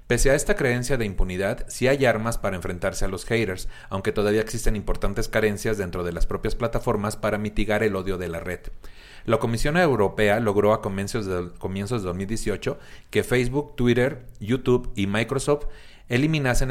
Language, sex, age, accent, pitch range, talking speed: Spanish, male, 40-59, Mexican, 105-120 Hz, 165 wpm